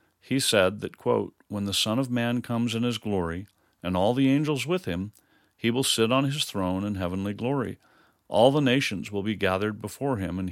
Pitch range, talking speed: 100-125 Hz, 210 wpm